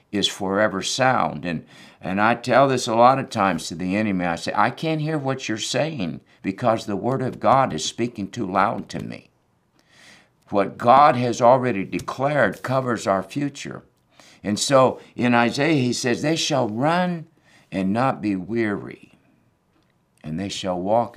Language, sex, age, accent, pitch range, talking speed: English, male, 60-79, American, 90-125 Hz, 165 wpm